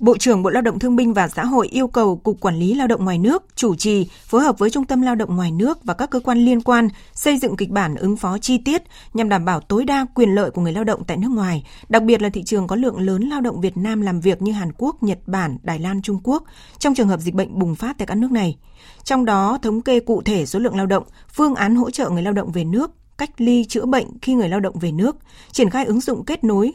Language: Vietnamese